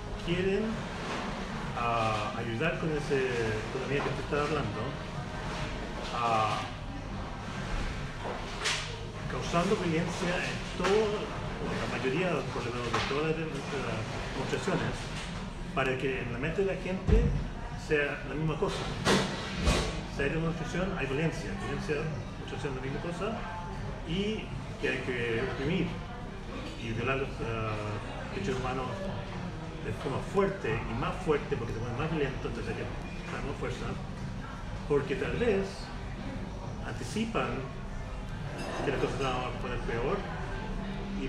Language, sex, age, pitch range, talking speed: Spanish, male, 30-49, 115-160 Hz, 120 wpm